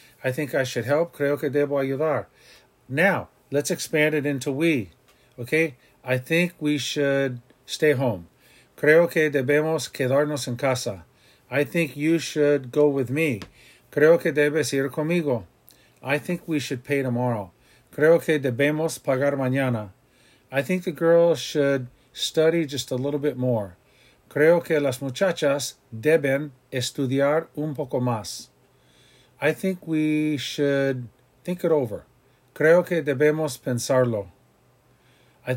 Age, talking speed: 50-69, 140 wpm